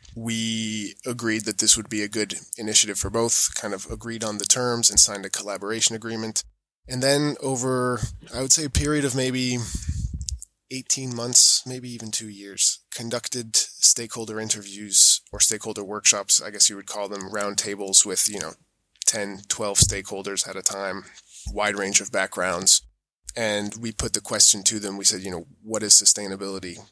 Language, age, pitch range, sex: English, 20-39, 100-115 Hz, male